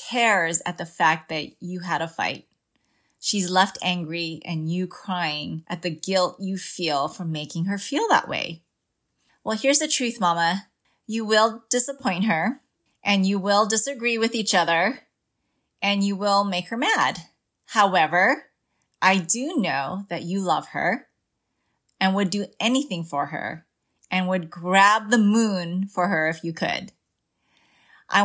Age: 30-49